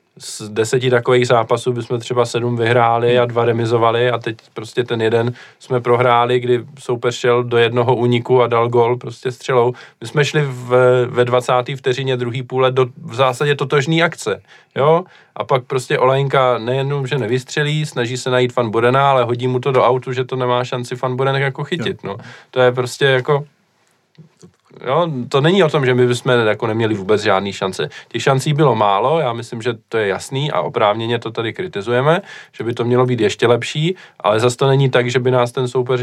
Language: Czech